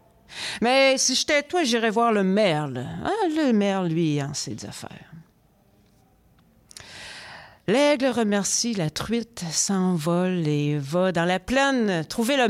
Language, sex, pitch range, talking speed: French, female, 165-235 Hz, 130 wpm